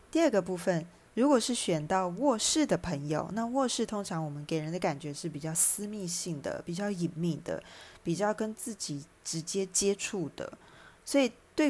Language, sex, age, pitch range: Chinese, female, 20-39, 160-210 Hz